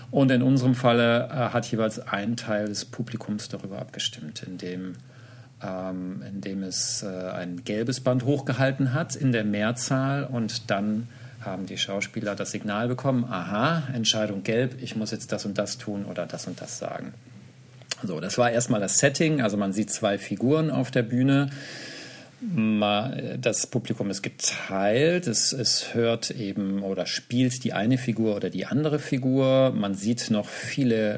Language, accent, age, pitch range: German, German, 50-69, 100-125 Hz